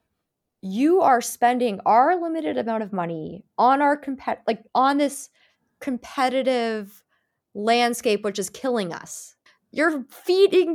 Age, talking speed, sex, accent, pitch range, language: 20-39, 125 wpm, female, American, 175-235 Hz, English